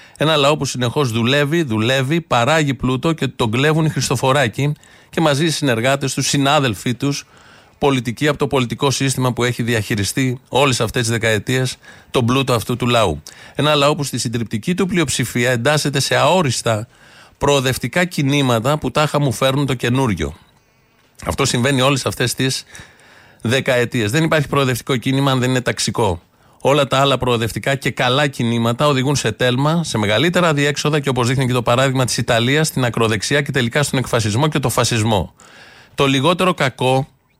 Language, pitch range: Greek, 120-145 Hz